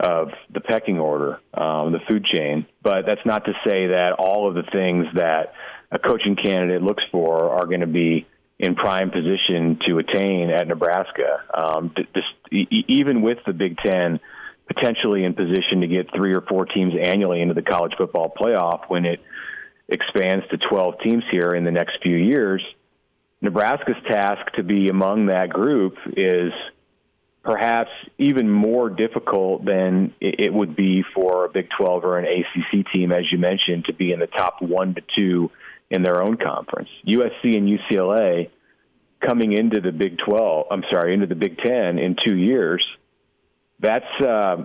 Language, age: English, 40-59